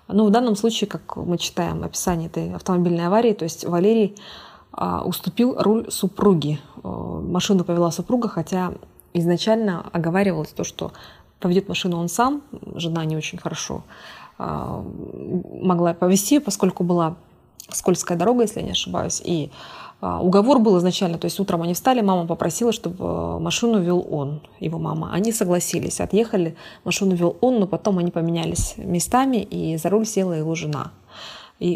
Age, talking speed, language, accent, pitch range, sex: 20-39, 155 wpm, Russian, native, 170-215 Hz, female